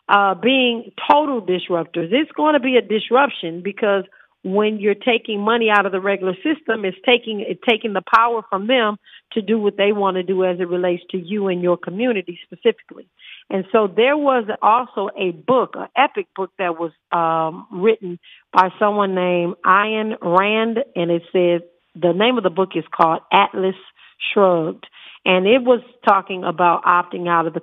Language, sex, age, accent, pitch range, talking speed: English, female, 50-69, American, 180-220 Hz, 190 wpm